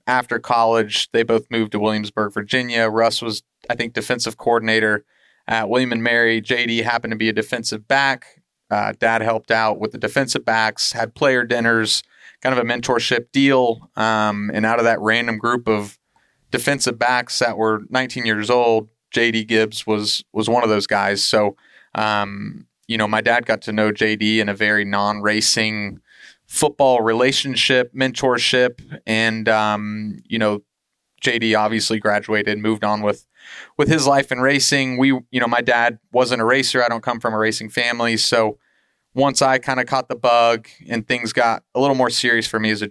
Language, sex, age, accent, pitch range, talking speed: English, male, 30-49, American, 110-125 Hz, 180 wpm